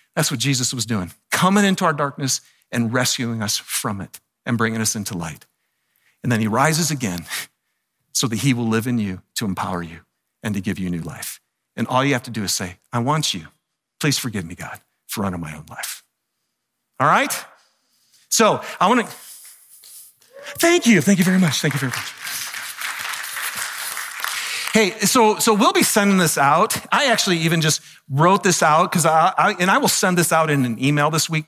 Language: English